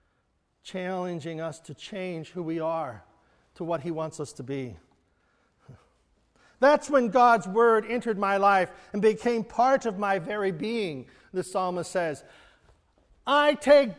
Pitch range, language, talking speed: 195-270 Hz, English, 140 wpm